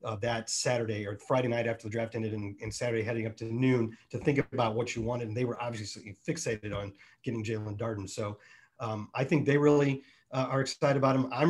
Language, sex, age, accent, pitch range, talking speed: English, male, 40-59, American, 115-140 Hz, 230 wpm